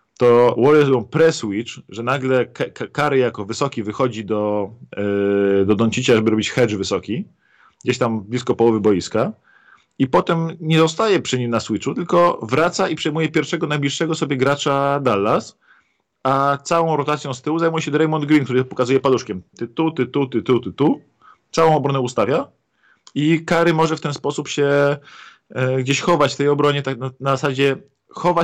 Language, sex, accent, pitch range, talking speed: Polish, male, native, 115-145 Hz, 175 wpm